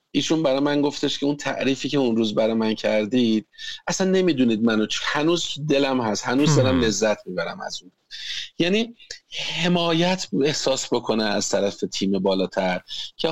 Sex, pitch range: male, 110-155 Hz